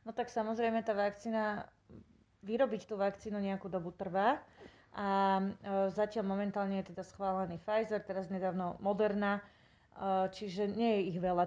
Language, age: Slovak, 30-49